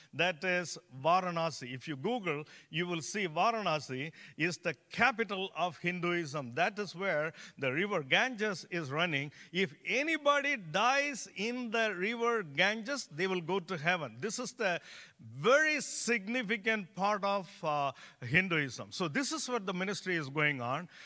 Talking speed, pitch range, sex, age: 150 wpm, 160-225 Hz, male, 50-69